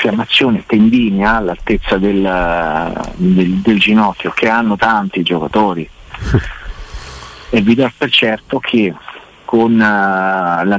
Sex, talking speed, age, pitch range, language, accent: male, 105 wpm, 50-69, 95-135 Hz, Italian, native